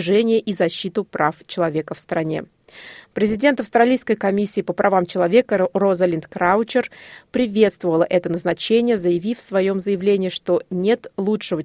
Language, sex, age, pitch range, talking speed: Russian, female, 30-49, 175-215 Hz, 125 wpm